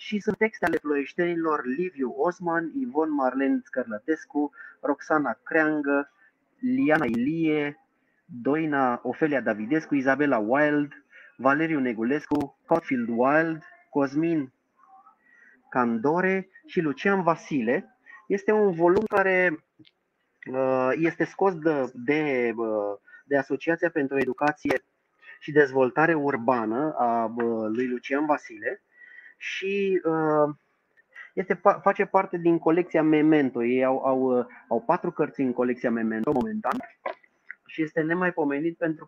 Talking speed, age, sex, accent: 105 wpm, 30-49, male, native